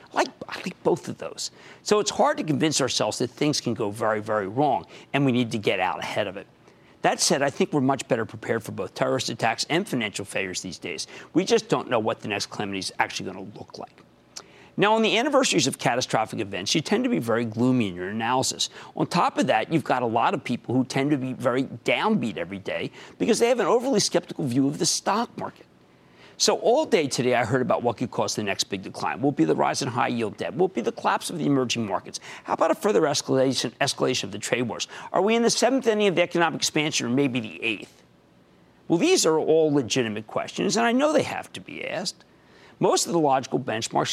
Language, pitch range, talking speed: English, 125-200 Hz, 240 wpm